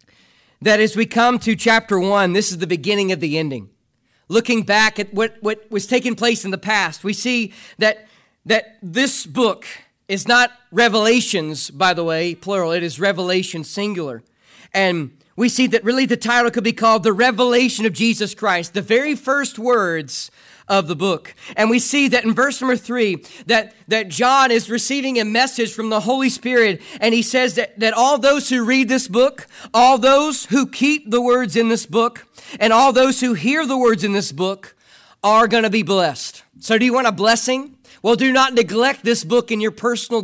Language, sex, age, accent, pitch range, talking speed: English, male, 40-59, American, 195-245 Hz, 195 wpm